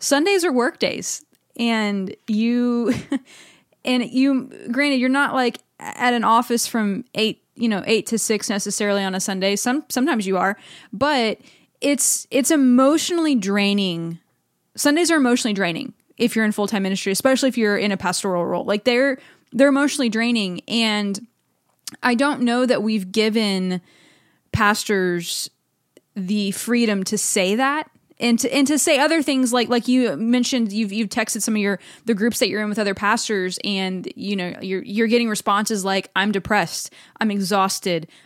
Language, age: English, 20-39